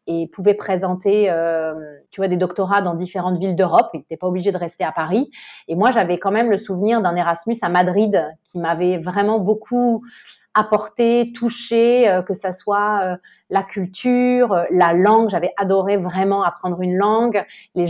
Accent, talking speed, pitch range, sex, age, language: French, 170 wpm, 180-220 Hz, female, 30-49, French